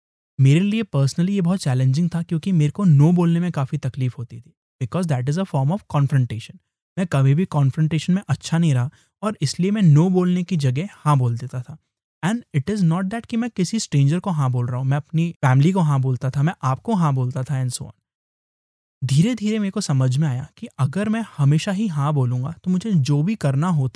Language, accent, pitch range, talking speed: English, Indian, 135-180 Hz, 175 wpm